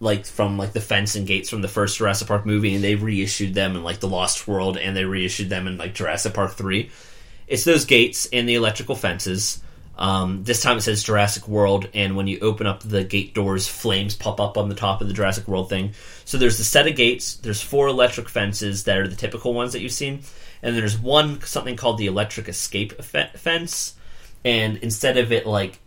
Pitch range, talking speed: 100-120 Hz, 225 wpm